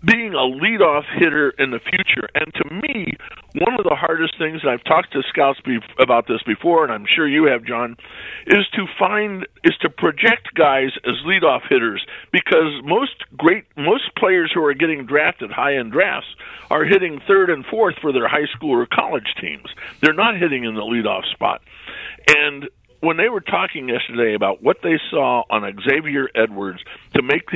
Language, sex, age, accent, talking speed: English, male, 50-69, American, 185 wpm